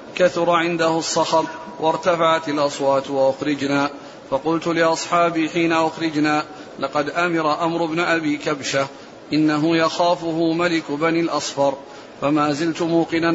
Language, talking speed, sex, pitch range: Arabic, 110 wpm, male, 145-165 Hz